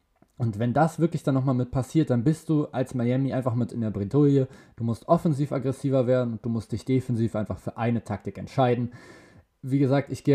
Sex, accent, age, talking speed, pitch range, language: male, German, 20-39, 215 wpm, 115-135 Hz, German